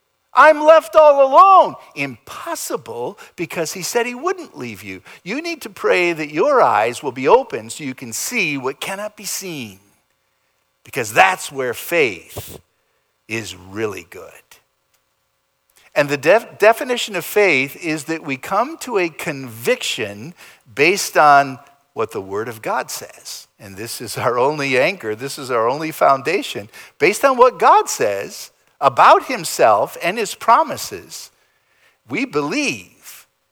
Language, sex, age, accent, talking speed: English, male, 50-69, American, 145 wpm